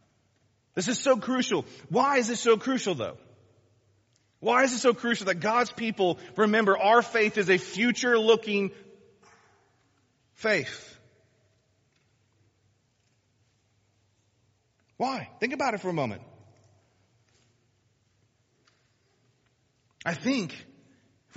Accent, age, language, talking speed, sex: American, 40-59, English, 100 wpm, male